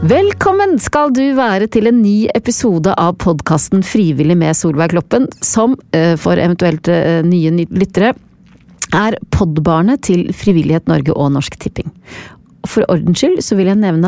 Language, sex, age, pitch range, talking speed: English, female, 40-59, 165-235 Hz, 140 wpm